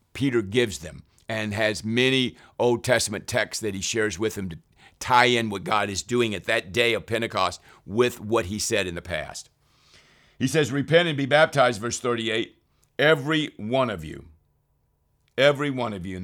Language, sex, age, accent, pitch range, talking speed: English, male, 50-69, American, 95-120 Hz, 185 wpm